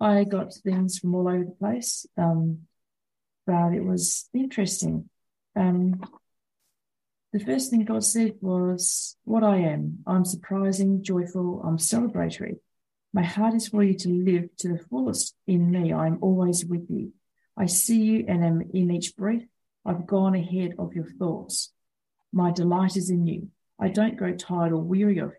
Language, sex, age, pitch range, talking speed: English, female, 40-59, 175-205 Hz, 165 wpm